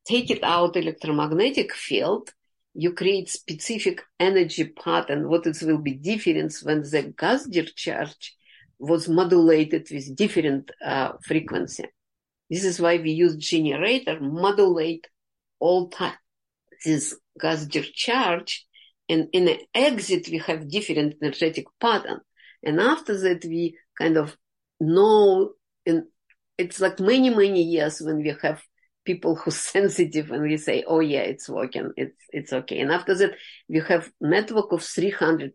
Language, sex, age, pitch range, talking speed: English, female, 50-69, 155-185 Hz, 140 wpm